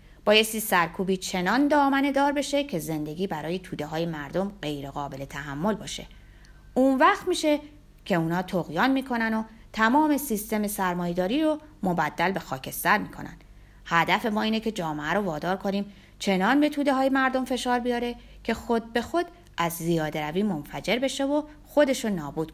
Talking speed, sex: 155 wpm, female